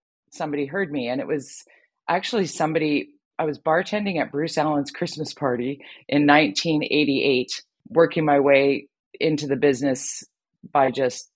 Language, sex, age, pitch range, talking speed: English, female, 40-59, 125-150 Hz, 135 wpm